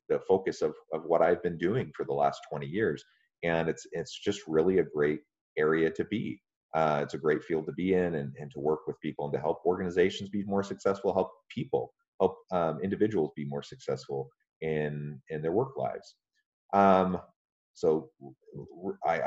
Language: English